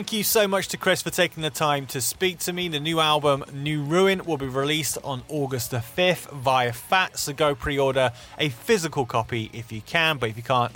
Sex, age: male, 30-49